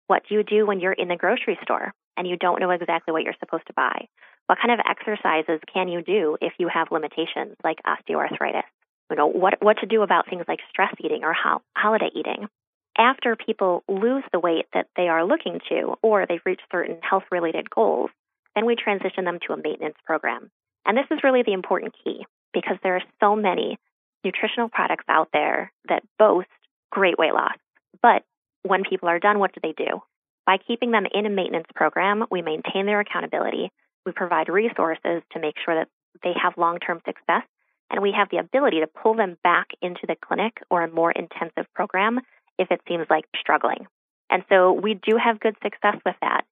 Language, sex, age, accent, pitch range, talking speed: English, female, 20-39, American, 175-220 Hz, 195 wpm